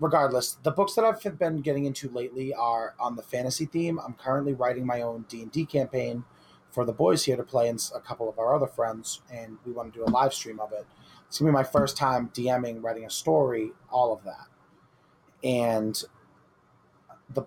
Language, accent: English, American